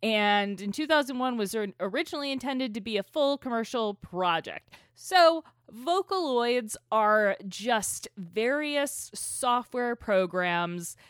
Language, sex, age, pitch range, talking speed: English, female, 20-39, 195-290 Hz, 105 wpm